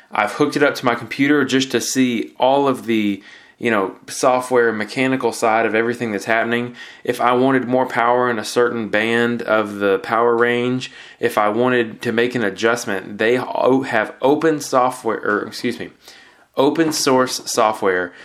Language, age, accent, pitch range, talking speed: English, 20-39, American, 110-130 Hz, 170 wpm